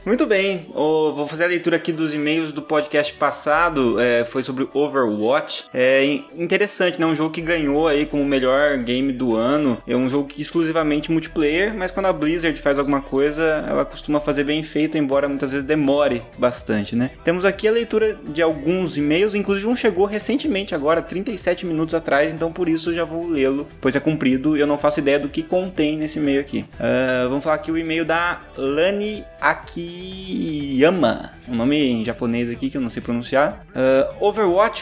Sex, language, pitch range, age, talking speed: male, Portuguese, 140-175 Hz, 20-39, 190 wpm